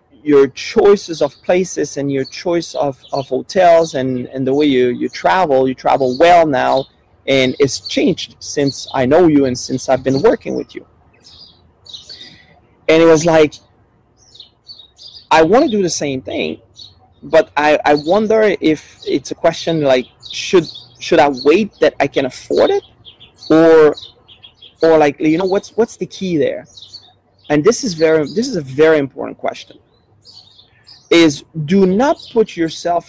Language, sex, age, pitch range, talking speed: English, male, 30-49, 120-165 Hz, 160 wpm